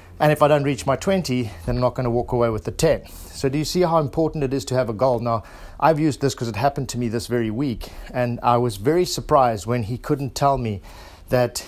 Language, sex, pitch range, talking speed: English, male, 115-140 Hz, 260 wpm